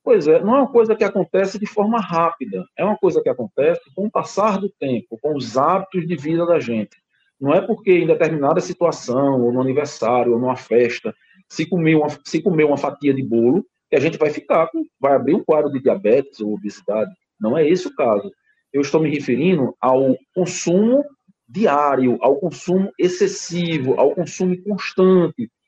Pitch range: 140-210 Hz